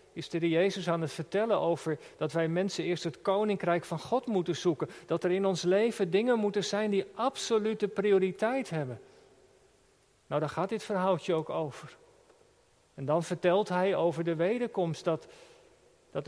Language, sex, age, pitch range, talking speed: Dutch, male, 50-69, 165-220 Hz, 165 wpm